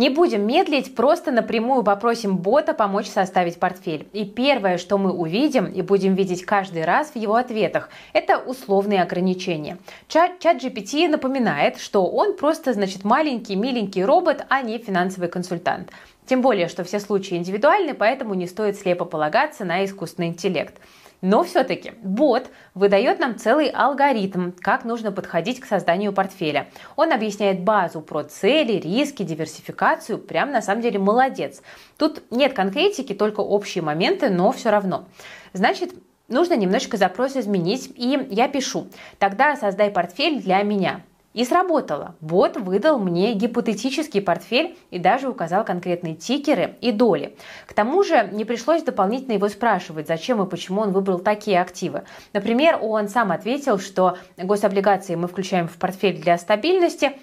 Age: 20-39